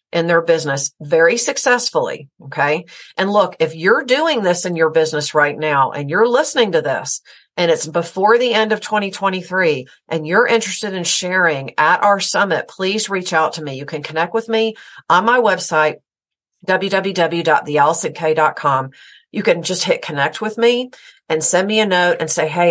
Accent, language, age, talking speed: American, English, 50-69, 175 wpm